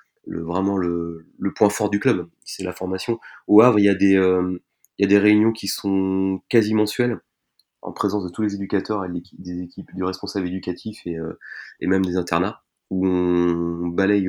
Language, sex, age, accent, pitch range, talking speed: French, male, 30-49, French, 90-105 Hz, 200 wpm